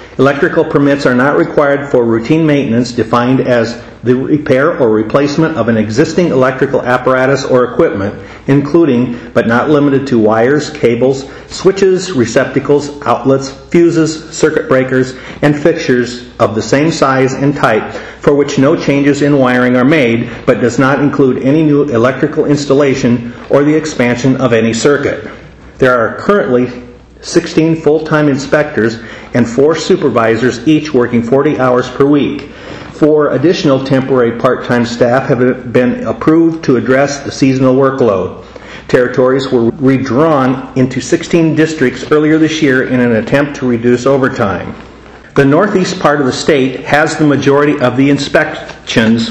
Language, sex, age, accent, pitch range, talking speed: English, male, 50-69, American, 125-145 Hz, 145 wpm